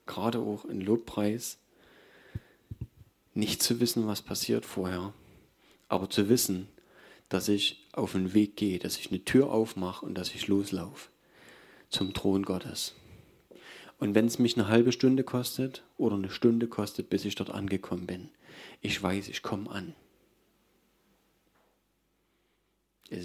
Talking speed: 140 wpm